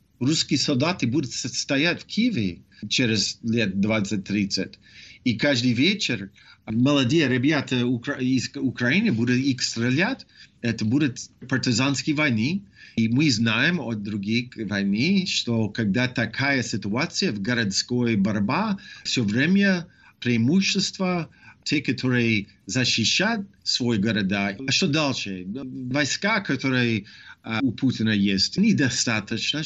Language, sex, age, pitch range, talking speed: Russian, male, 50-69, 110-150 Hz, 105 wpm